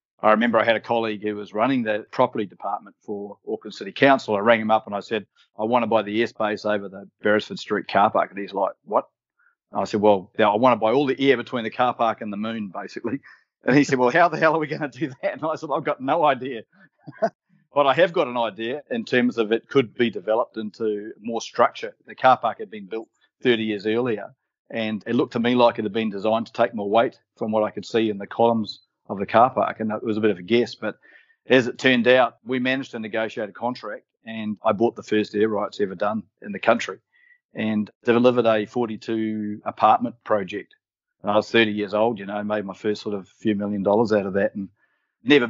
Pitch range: 105-120 Hz